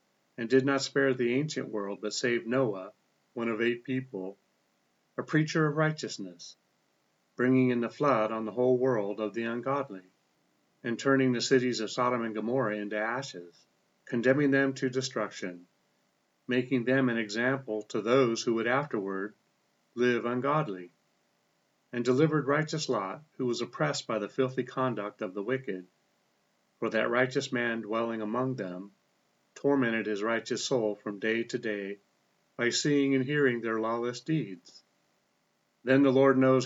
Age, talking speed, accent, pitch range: 40-59, 155 wpm, American, 110-135 Hz